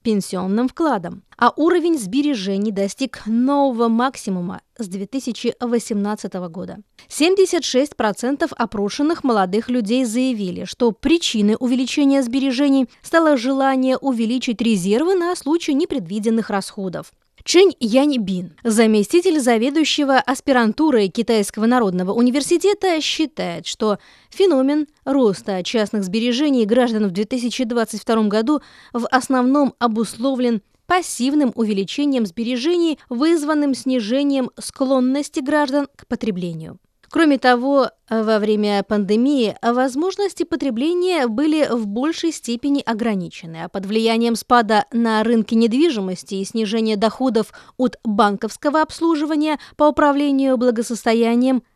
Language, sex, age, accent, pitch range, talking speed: Russian, female, 20-39, native, 220-285 Hz, 100 wpm